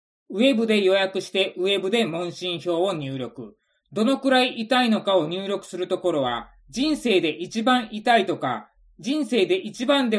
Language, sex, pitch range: Japanese, male, 160-225 Hz